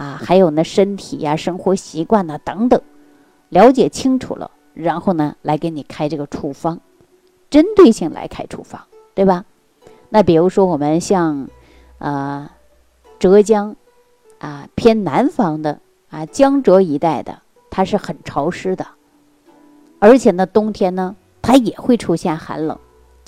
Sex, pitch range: female, 160-220 Hz